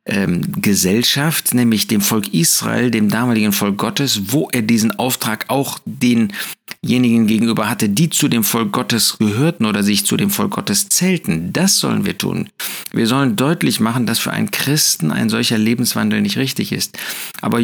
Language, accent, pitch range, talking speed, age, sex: German, German, 110-185 Hz, 165 wpm, 50-69, male